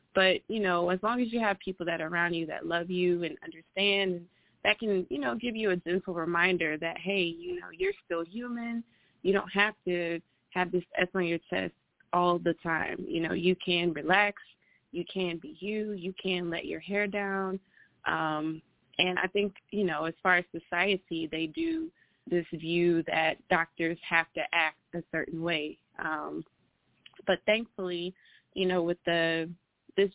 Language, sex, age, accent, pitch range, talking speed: English, female, 20-39, American, 170-195 Hz, 185 wpm